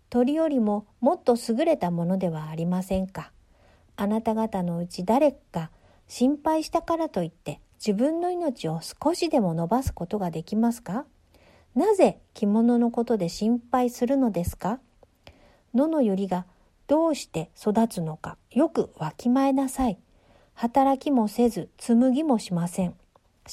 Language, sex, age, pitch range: Japanese, female, 50-69, 185-255 Hz